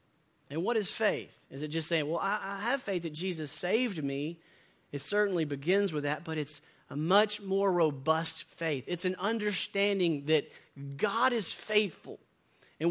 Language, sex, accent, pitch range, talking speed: English, male, American, 160-235 Hz, 170 wpm